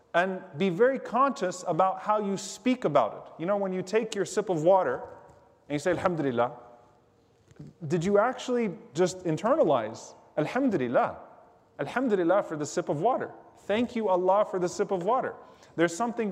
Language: English